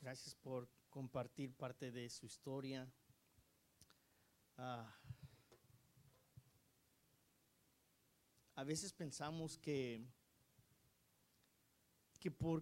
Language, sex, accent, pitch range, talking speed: Spanish, male, Mexican, 130-155 Hz, 65 wpm